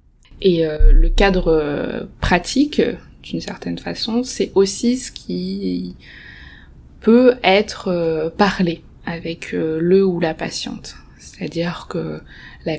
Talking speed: 125 wpm